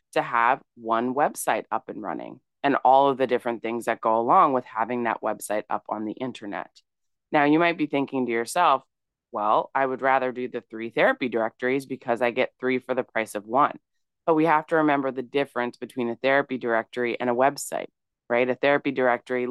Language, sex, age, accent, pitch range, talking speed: English, female, 20-39, American, 120-140 Hz, 205 wpm